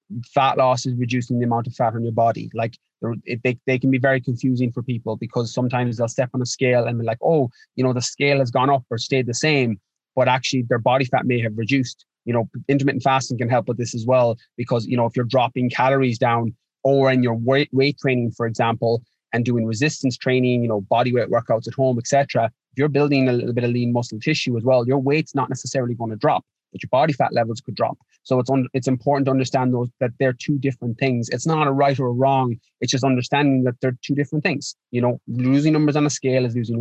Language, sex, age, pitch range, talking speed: English, male, 20-39, 120-135 Hz, 250 wpm